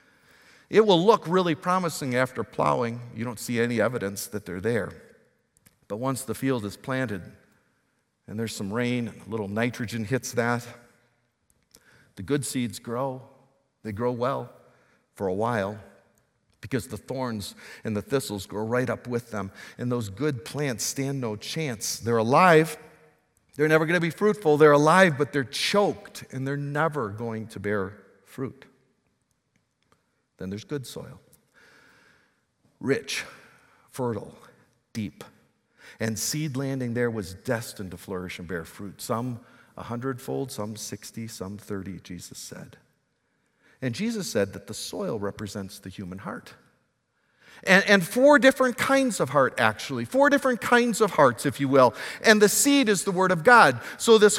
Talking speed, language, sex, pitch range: 155 wpm, English, male, 110-180 Hz